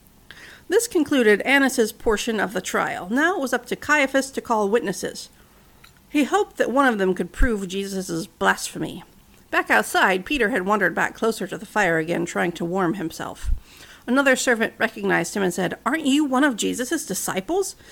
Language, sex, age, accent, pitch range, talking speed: English, female, 50-69, American, 200-285 Hz, 180 wpm